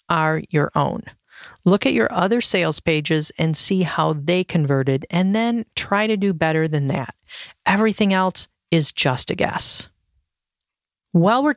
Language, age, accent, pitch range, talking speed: English, 40-59, American, 155-200 Hz, 155 wpm